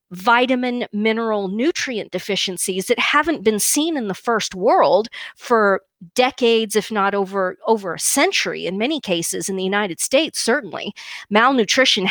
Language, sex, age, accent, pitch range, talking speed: English, female, 40-59, American, 195-245 Hz, 145 wpm